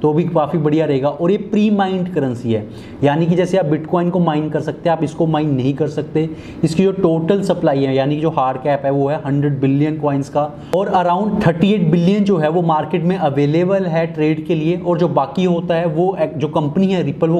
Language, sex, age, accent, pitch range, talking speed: Hindi, male, 30-49, native, 150-175 Hz, 45 wpm